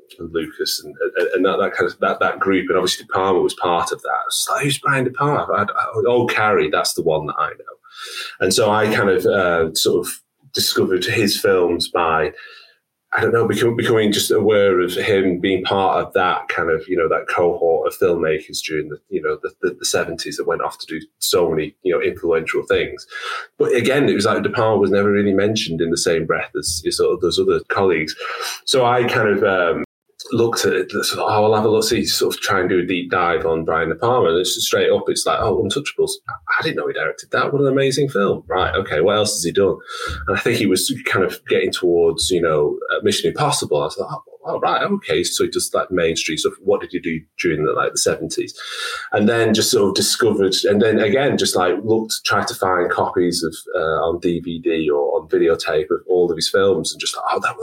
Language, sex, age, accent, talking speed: English, male, 30-49, British, 240 wpm